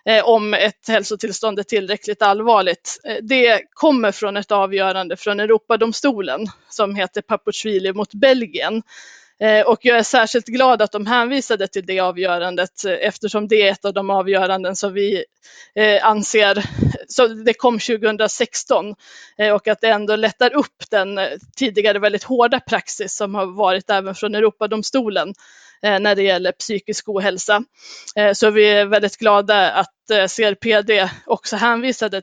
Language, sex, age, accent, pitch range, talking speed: Swedish, female, 20-39, native, 200-230 Hz, 135 wpm